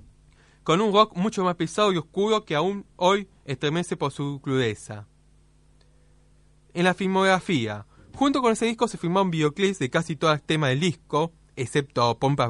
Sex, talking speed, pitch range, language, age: male, 170 wpm, 125-190 Hz, Spanish, 20-39